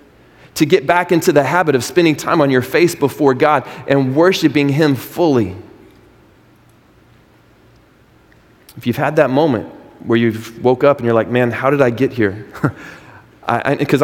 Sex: male